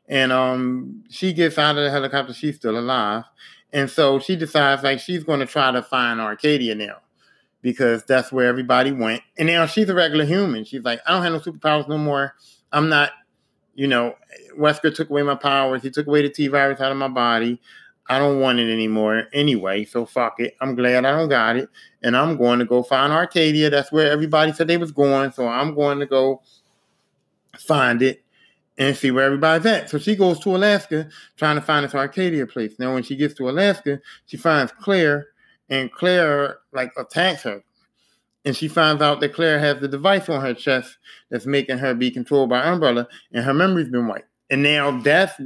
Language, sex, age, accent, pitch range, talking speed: English, male, 30-49, American, 125-150 Hz, 205 wpm